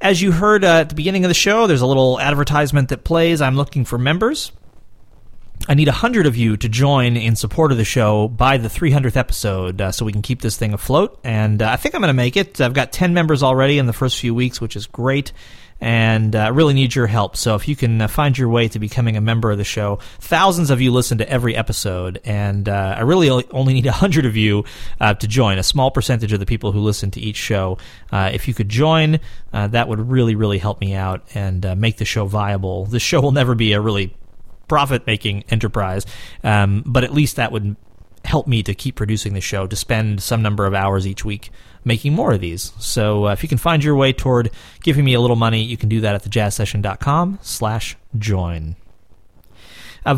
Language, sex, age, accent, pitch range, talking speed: English, male, 30-49, American, 105-135 Hz, 230 wpm